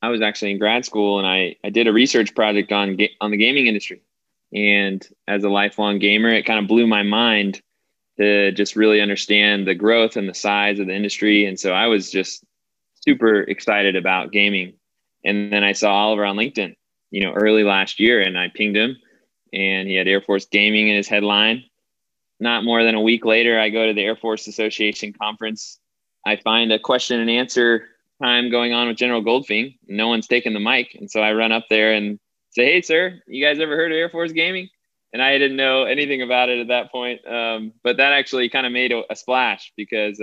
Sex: male